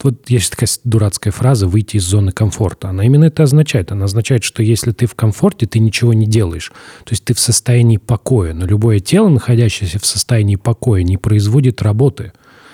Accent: native